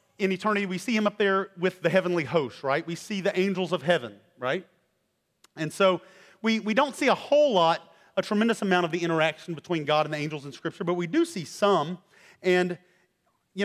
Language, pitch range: English, 175-210 Hz